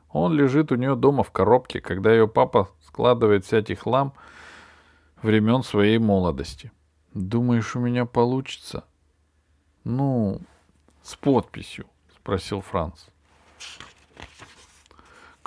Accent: native